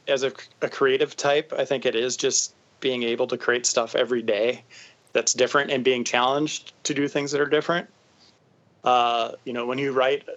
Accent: American